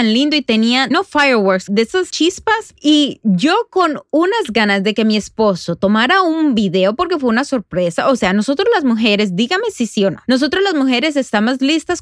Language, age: English, 30-49